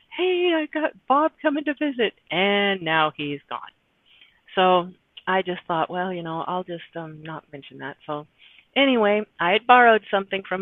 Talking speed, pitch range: 175 wpm, 165-210 Hz